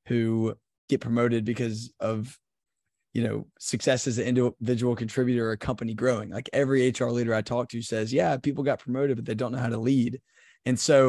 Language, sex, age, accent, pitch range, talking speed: English, male, 20-39, American, 115-135 Hz, 200 wpm